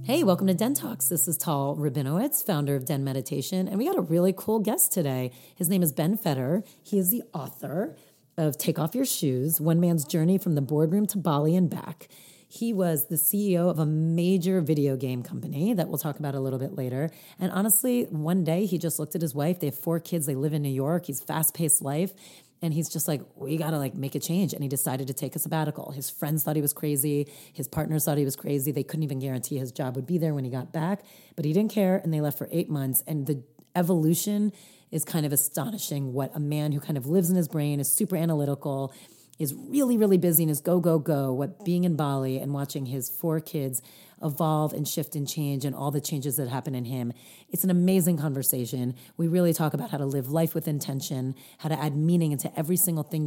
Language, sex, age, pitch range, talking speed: English, female, 30-49, 140-175 Hz, 240 wpm